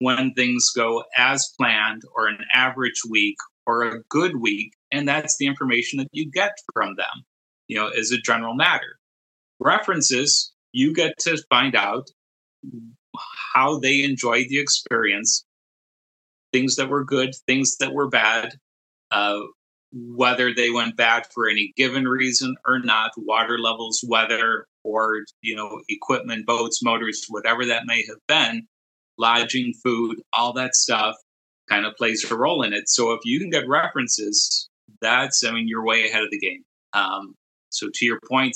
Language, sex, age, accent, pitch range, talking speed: English, male, 30-49, American, 115-135 Hz, 160 wpm